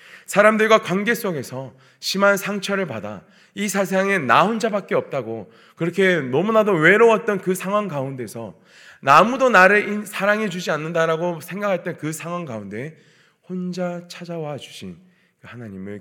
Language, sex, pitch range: Korean, male, 115-175 Hz